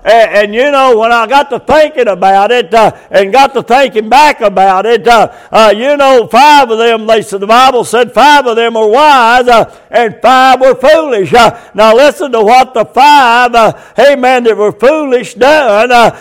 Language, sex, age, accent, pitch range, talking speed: English, male, 60-79, American, 230-285 Hz, 205 wpm